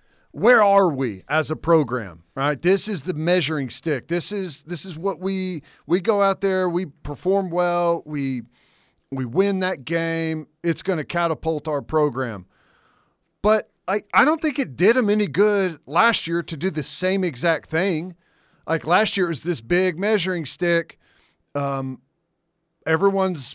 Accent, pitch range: American, 160-195 Hz